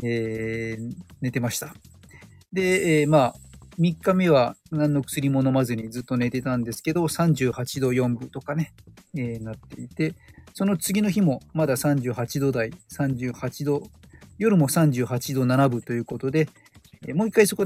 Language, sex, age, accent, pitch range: Japanese, male, 40-59, native, 120-170 Hz